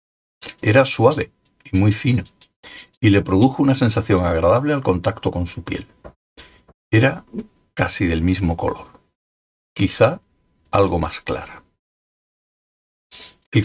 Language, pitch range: Spanish, 85-120 Hz